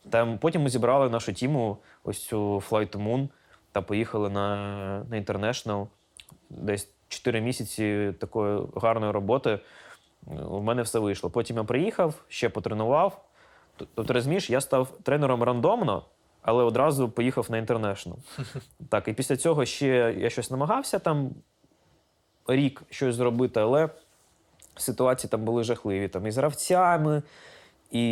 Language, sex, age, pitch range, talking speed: Ukrainian, male, 20-39, 105-130 Hz, 130 wpm